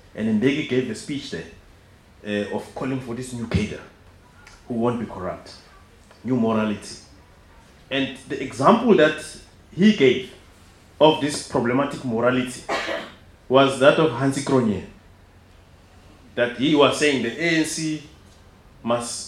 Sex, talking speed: male, 130 wpm